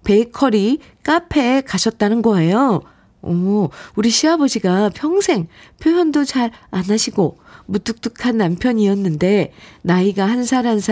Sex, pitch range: female, 185-270 Hz